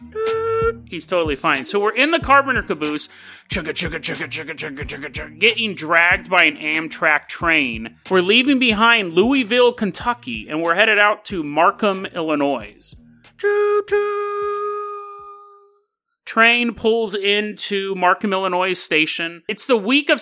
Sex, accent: male, American